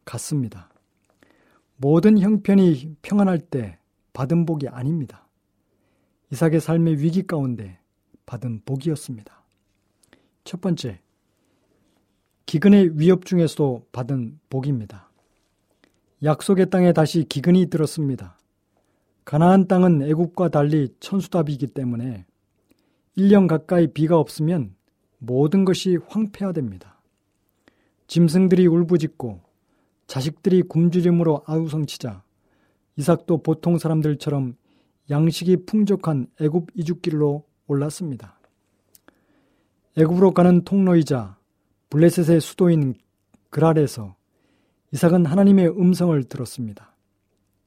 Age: 40-59